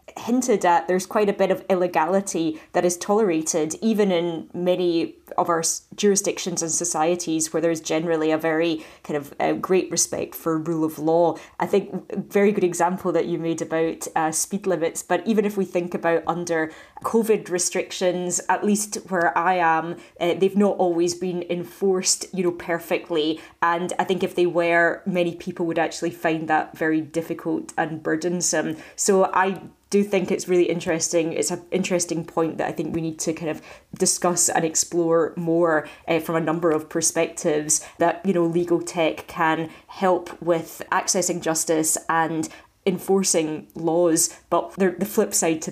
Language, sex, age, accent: English, female, 20-39, British